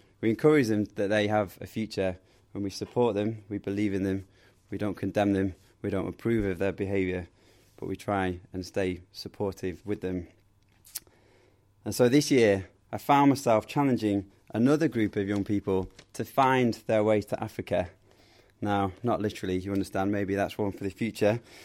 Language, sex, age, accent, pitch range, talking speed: English, male, 20-39, British, 100-115 Hz, 175 wpm